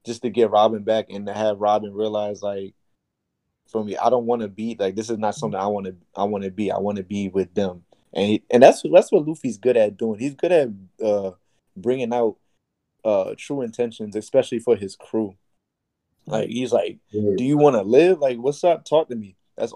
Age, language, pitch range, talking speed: 20-39, English, 105-120 Hz, 225 wpm